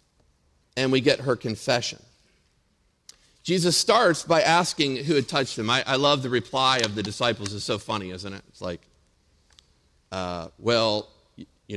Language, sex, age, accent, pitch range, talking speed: English, male, 50-69, American, 100-130 Hz, 160 wpm